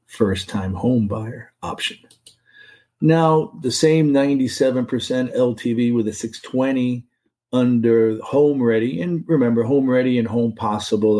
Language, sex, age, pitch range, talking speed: English, male, 40-59, 105-125 Hz, 120 wpm